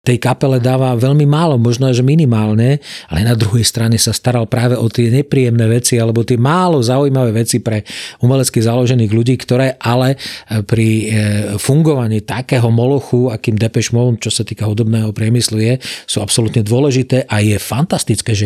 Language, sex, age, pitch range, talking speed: Slovak, male, 40-59, 110-120 Hz, 160 wpm